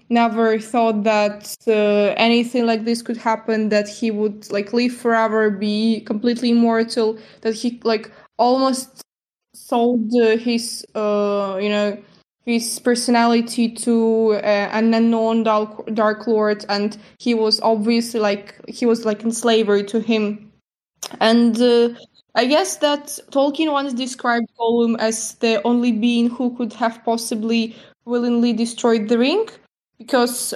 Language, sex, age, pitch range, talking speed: German, female, 20-39, 220-240 Hz, 140 wpm